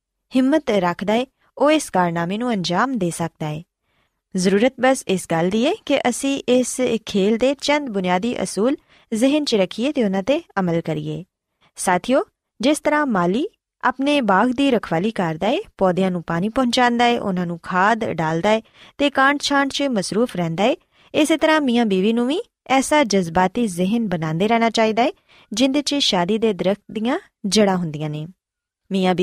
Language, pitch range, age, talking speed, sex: Punjabi, 185-270 Hz, 20-39, 150 wpm, female